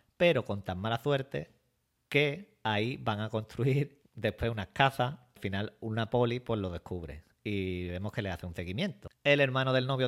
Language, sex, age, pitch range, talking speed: Spanish, male, 40-59, 100-125 Hz, 185 wpm